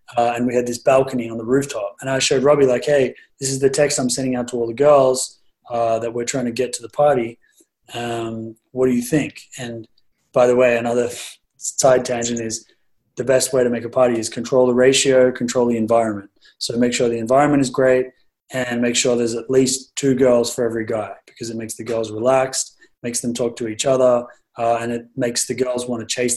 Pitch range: 115-135 Hz